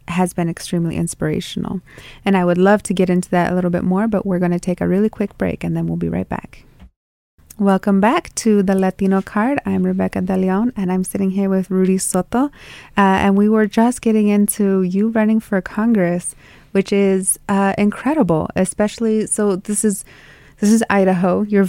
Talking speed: 190 wpm